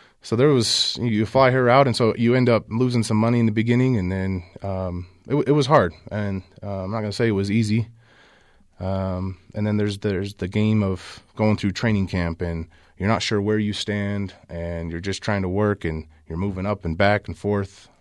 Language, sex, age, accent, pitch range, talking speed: English, male, 30-49, American, 90-105 Hz, 225 wpm